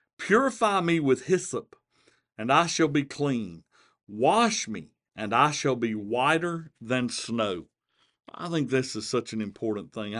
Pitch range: 115-145 Hz